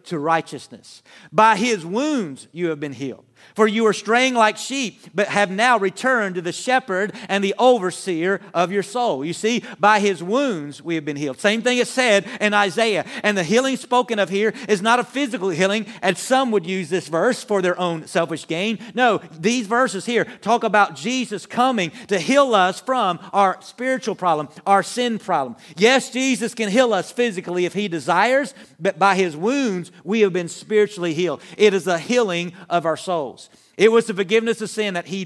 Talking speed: 195 wpm